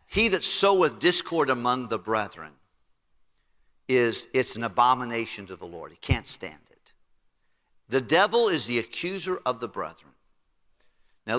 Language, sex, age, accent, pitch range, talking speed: English, male, 50-69, American, 115-160 Hz, 140 wpm